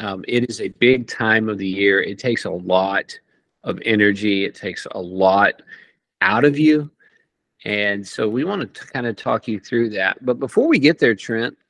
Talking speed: 200 wpm